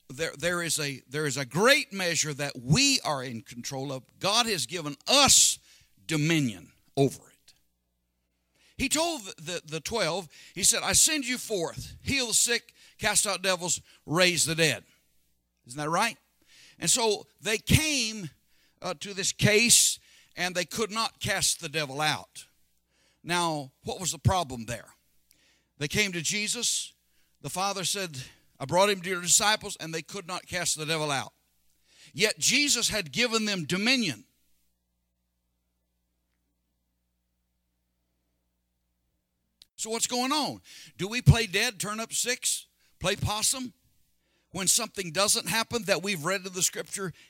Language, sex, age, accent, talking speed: English, male, 60-79, American, 145 wpm